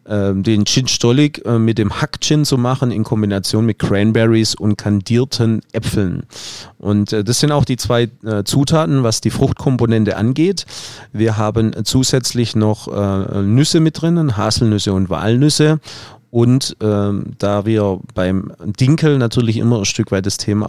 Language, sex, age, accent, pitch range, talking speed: German, male, 30-49, German, 105-125 Hz, 140 wpm